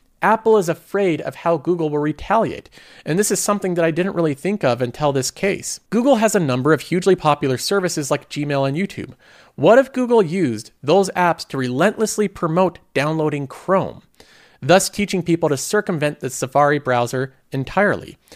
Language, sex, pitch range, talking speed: English, male, 135-190 Hz, 175 wpm